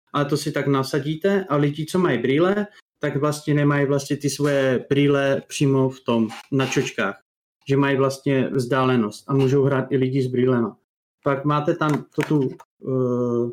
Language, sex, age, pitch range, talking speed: Czech, male, 30-49, 130-155 Hz, 170 wpm